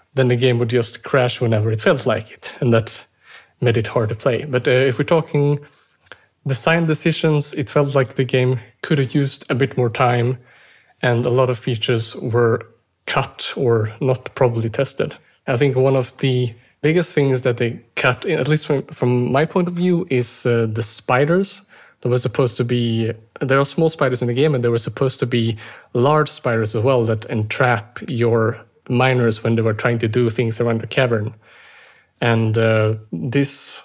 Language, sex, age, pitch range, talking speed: English, male, 30-49, 115-140 Hz, 195 wpm